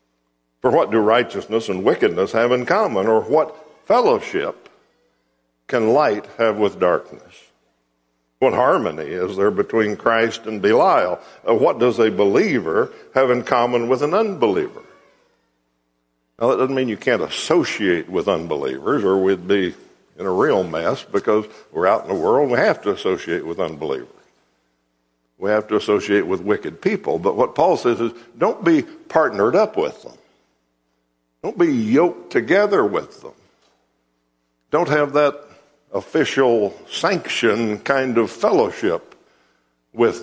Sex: male